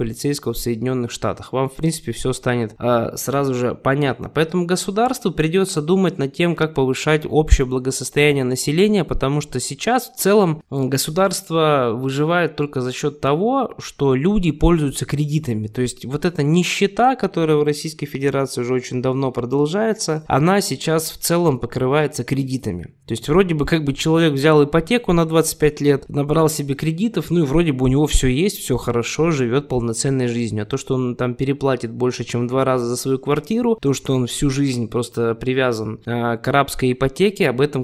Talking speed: 180 wpm